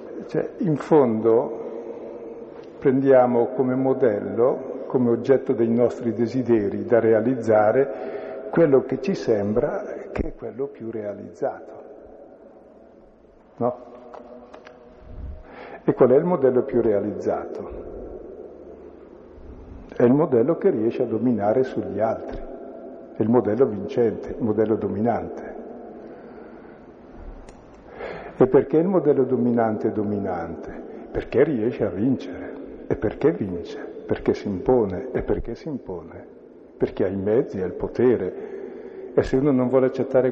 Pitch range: 115-145 Hz